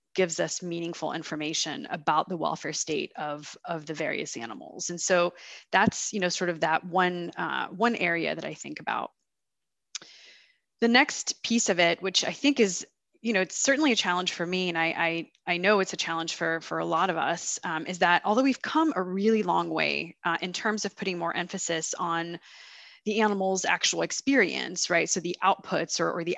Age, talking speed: 20-39, 200 wpm